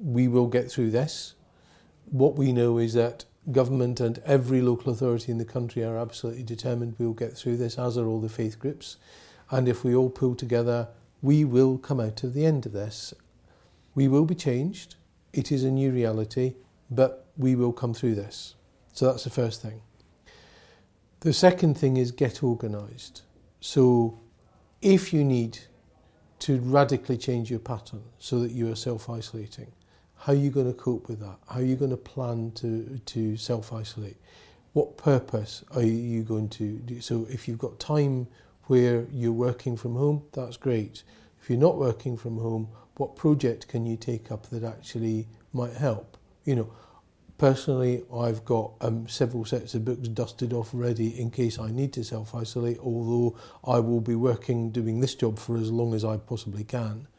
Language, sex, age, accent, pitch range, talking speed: English, male, 40-59, British, 115-130 Hz, 180 wpm